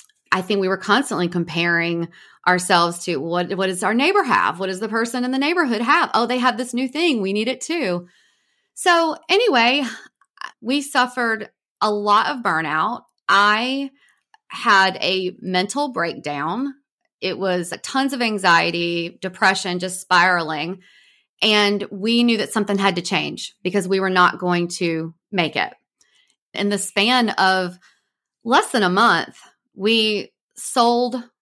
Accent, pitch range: American, 185-245 Hz